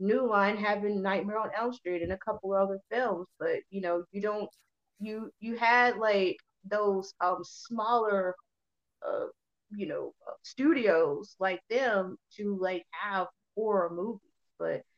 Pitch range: 185-225 Hz